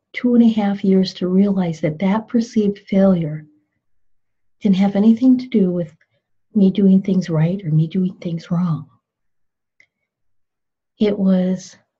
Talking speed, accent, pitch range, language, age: 140 wpm, American, 165-200 Hz, English, 50-69